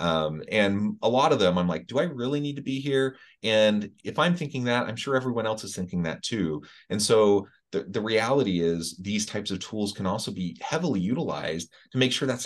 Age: 30-49